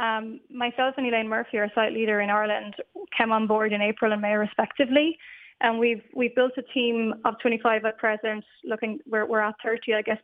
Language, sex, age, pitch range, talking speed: English, female, 20-39, 215-235 Hz, 205 wpm